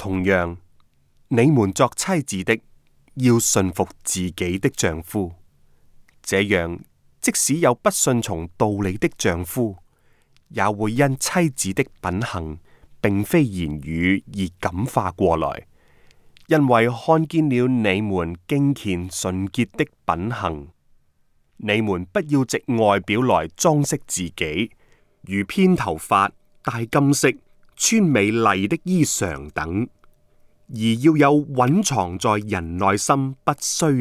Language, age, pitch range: Chinese, 30-49, 90-135 Hz